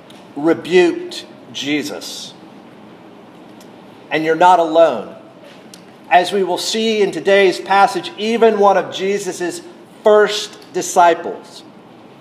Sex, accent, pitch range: male, American, 170-210 Hz